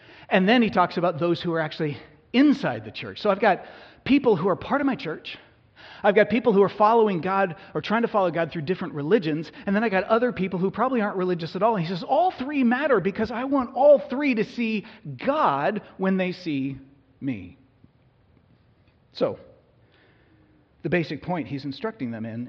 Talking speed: 200 wpm